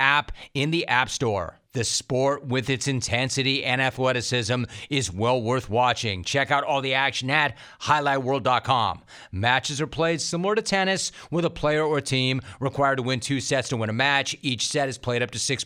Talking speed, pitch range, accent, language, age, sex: 190 wpm, 120-145 Hz, American, English, 40-59, male